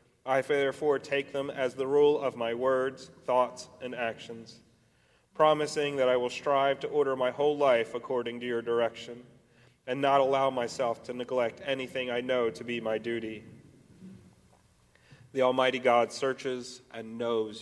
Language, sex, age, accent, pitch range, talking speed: English, male, 30-49, American, 120-140 Hz, 155 wpm